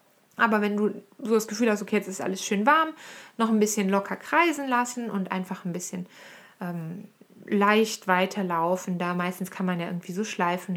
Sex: female